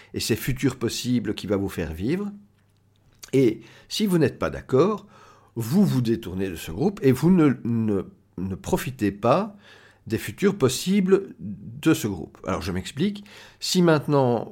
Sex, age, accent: male, 50-69, French